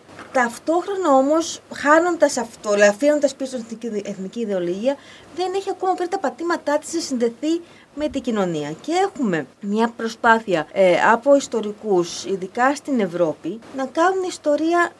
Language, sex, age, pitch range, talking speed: Greek, female, 30-49, 205-290 Hz, 135 wpm